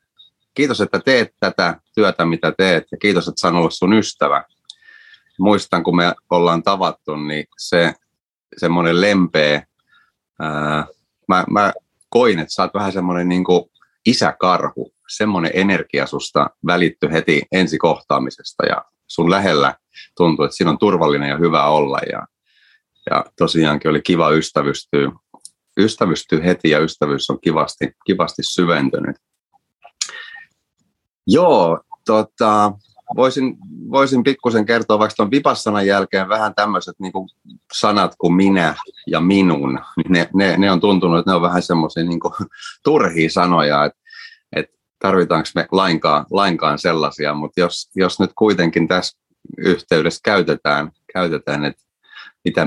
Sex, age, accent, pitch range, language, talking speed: male, 30-49, native, 80-105 Hz, Finnish, 130 wpm